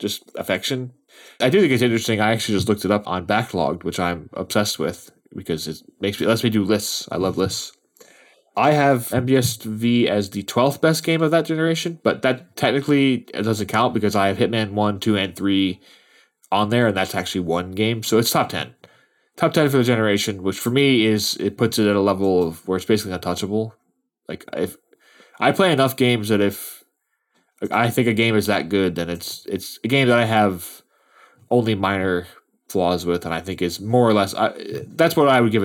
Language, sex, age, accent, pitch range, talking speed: English, male, 20-39, American, 95-120 Hz, 210 wpm